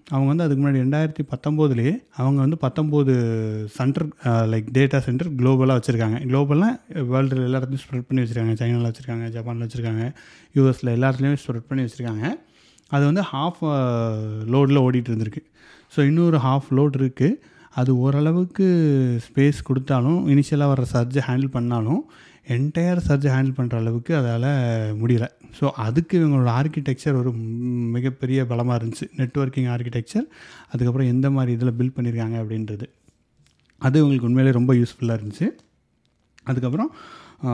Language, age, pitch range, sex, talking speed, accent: Tamil, 30-49, 120-145 Hz, male, 130 wpm, native